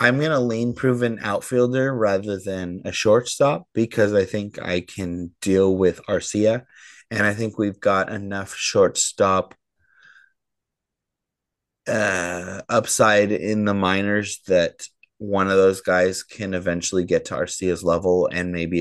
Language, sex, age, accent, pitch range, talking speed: English, male, 30-49, American, 95-125 Hz, 135 wpm